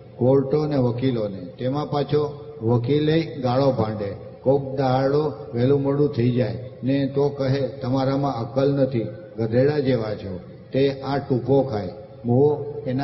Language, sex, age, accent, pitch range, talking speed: Gujarati, male, 50-69, native, 120-140 Hz, 110 wpm